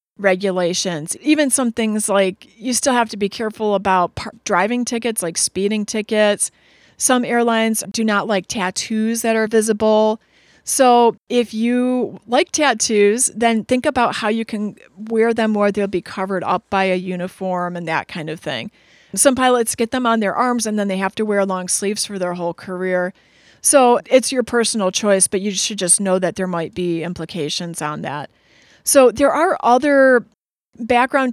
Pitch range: 190-245 Hz